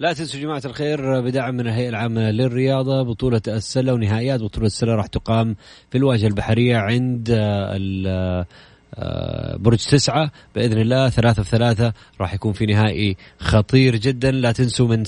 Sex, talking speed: male, 145 wpm